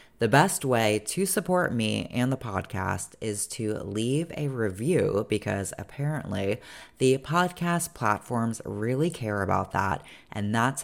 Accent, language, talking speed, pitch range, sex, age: American, English, 140 wpm, 105-140 Hz, female, 30-49